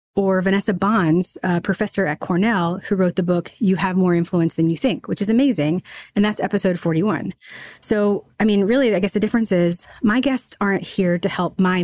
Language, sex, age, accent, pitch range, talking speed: English, female, 30-49, American, 170-210 Hz, 210 wpm